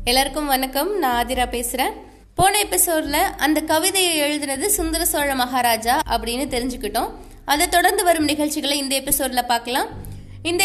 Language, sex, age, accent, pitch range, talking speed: Tamil, female, 20-39, native, 275-360 Hz, 90 wpm